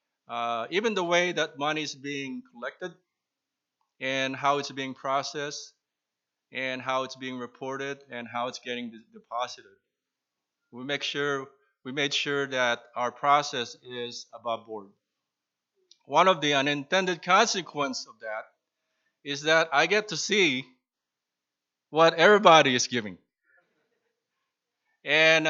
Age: 20-39